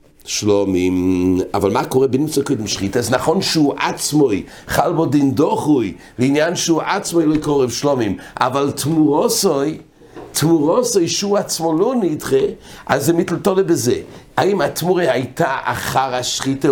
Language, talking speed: English, 130 wpm